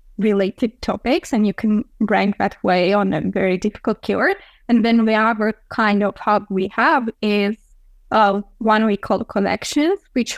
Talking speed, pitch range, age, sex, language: 170 wpm, 205-245 Hz, 20-39, female, English